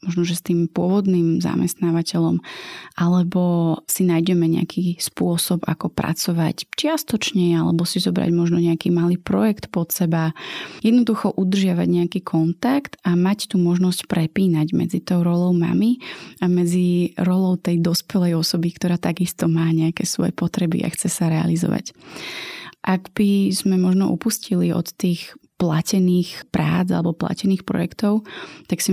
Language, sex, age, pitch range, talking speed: Slovak, female, 20-39, 170-190 Hz, 135 wpm